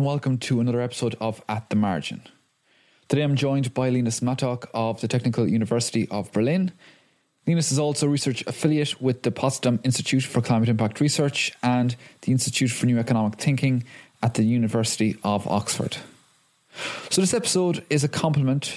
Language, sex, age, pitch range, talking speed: English, male, 20-39, 120-150 Hz, 165 wpm